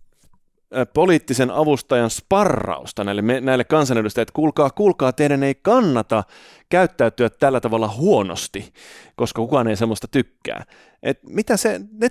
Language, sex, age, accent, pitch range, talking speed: Finnish, male, 30-49, native, 110-155 Hz, 125 wpm